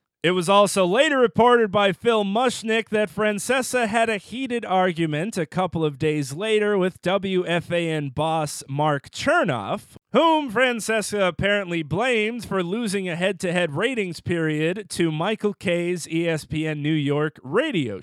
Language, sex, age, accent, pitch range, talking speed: English, male, 30-49, American, 165-230 Hz, 135 wpm